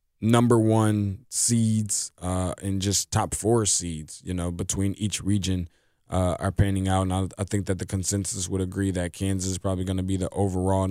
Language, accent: English, American